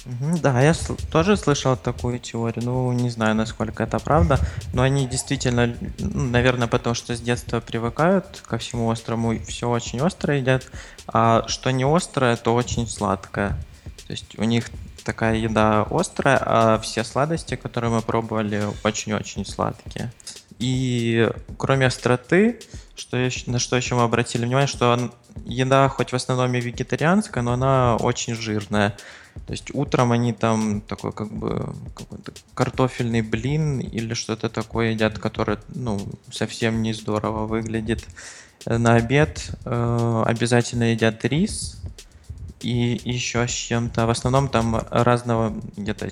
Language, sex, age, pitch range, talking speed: Russian, male, 20-39, 110-125 Hz, 135 wpm